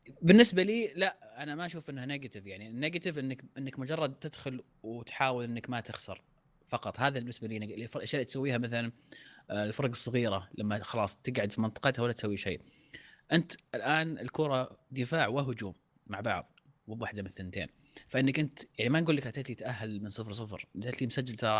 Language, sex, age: Arabic, male, 30-49